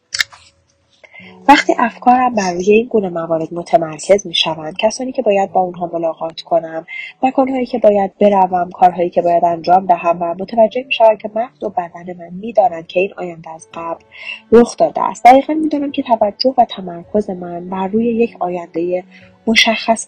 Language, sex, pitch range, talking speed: Persian, female, 180-240 Hz, 170 wpm